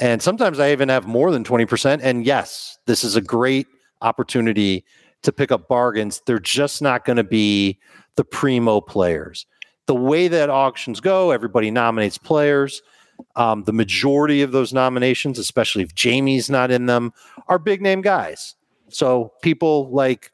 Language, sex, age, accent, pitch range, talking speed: English, male, 40-59, American, 110-140 Hz, 160 wpm